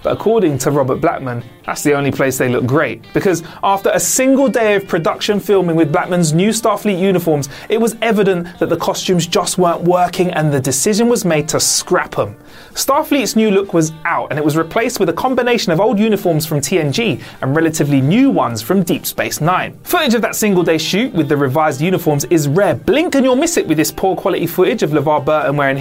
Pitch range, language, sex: 140-200 Hz, English, male